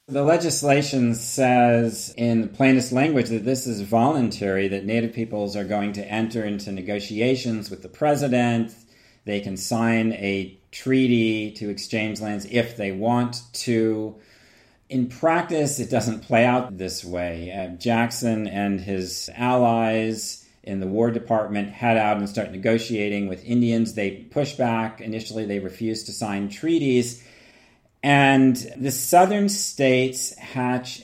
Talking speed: 140 wpm